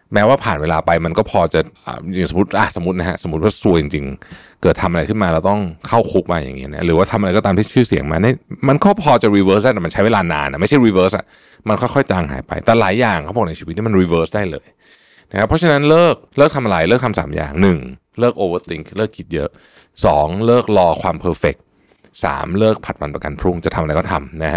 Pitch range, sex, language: 85-115 Hz, male, Thai